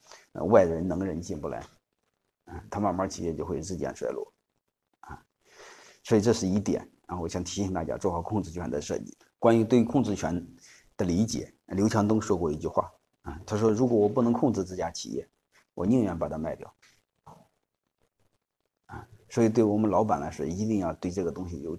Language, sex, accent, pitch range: Chinese, male, native, 90-115 Hz